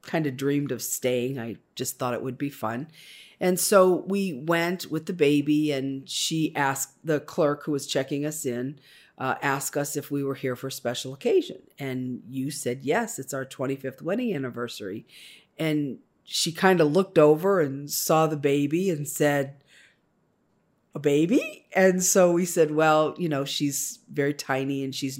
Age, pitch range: 50-69, 135-180 Hz